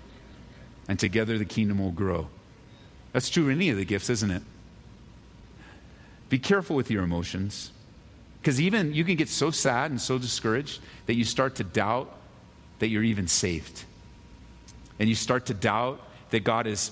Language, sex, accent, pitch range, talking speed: English, male, American, 105-160 Hz, 165 wpm